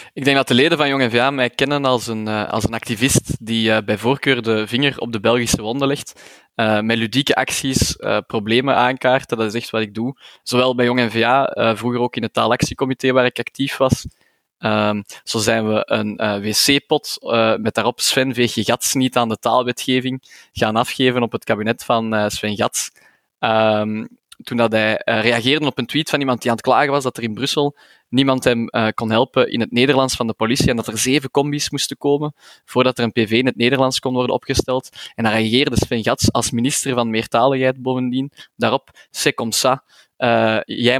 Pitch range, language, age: 115-130 Hz, Dutch, 20-39